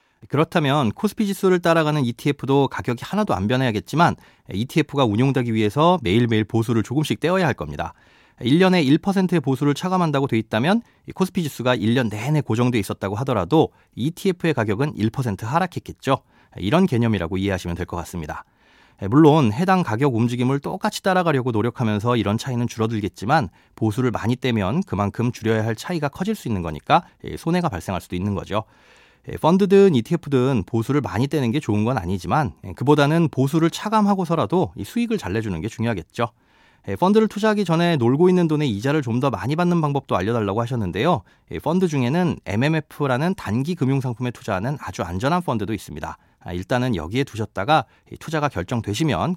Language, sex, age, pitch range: Korean, male, 30-49, 110-160 Hz